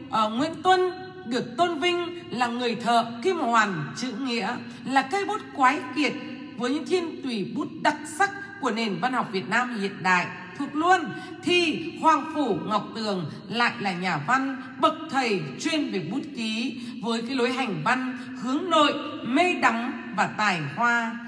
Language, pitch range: Vietnamese, 215-295 Hz